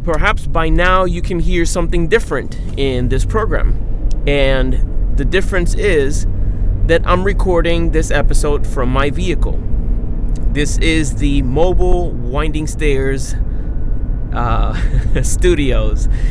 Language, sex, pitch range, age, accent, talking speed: English, male, 110-145 Hz, 30-49, American, 115 wpm